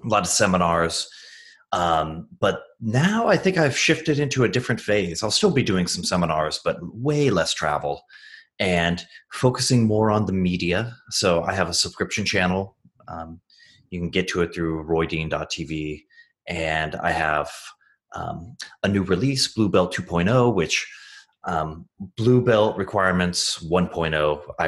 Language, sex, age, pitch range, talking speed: English, male, 30-49, 85-120 Hz, 145 wpm